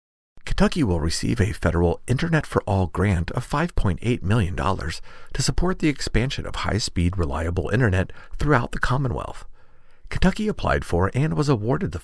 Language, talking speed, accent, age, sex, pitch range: English, 150 wpm, American, 50-69, male, 90-130 Hz